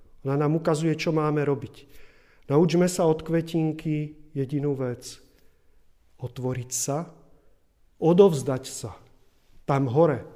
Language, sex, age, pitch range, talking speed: Czech, male, 40-59, 140-165 Hz, 105 wpm